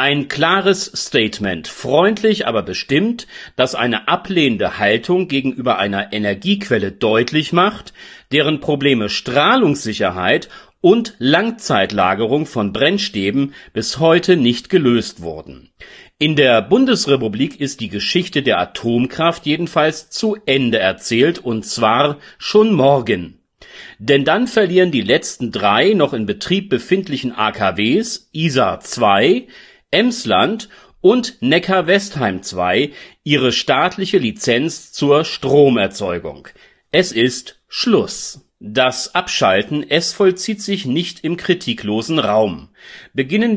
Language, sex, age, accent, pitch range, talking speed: German, male, 40-59, German, 115-185 Hz, 105 wpm